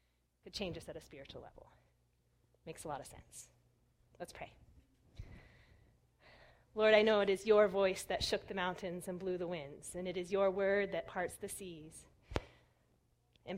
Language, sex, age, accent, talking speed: English, female, 30-49, American, 170 wpm